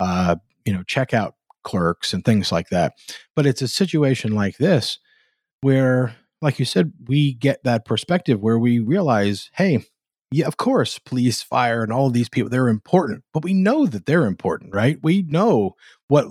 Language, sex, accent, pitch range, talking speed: English, male, American, 110-155 Hz, 175 wpm